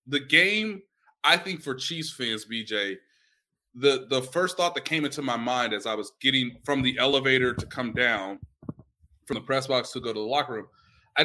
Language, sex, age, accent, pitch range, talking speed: English, male, 20-39, American, 125-170 Hz, 205 wpm